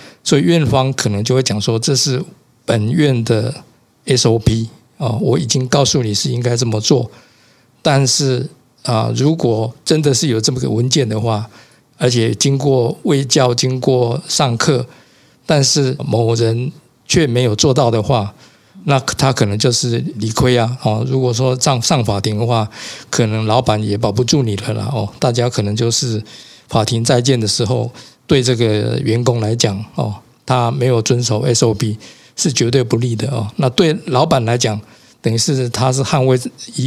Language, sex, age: Chinese, male, 50-69